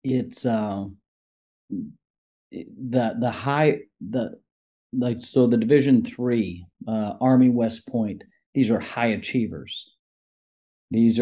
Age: 40-59